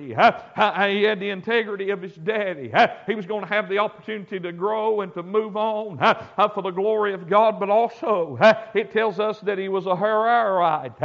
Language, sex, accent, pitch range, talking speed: English, male, American, 200-225 Hz, 215 wpm